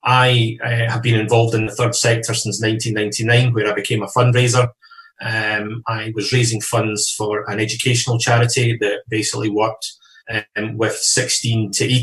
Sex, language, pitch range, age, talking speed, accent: male, English, 110-120 Hz, 30-49, 155 wpm, British